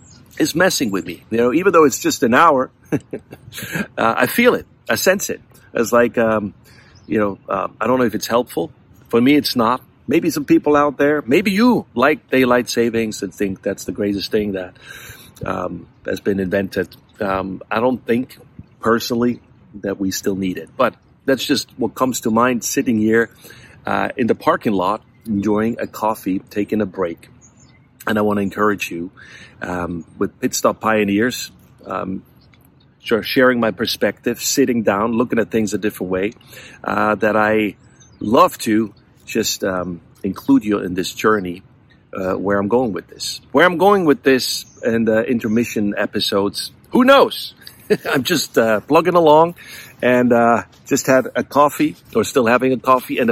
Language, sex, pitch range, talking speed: English, male, 100-125 Hz, 175 wpm